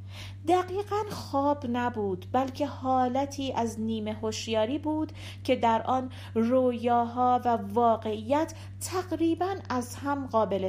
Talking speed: 105 wpm